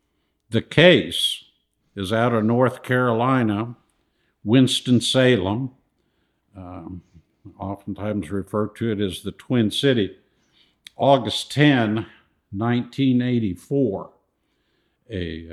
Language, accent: English, American